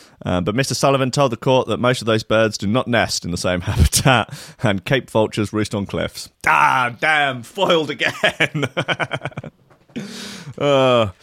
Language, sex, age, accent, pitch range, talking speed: English, male, 30-49, British, 100-125 Hz, 160 wpm